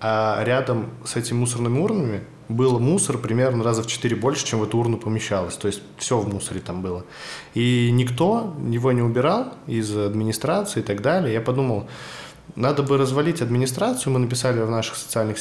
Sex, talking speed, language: male, 180 wpm, Russian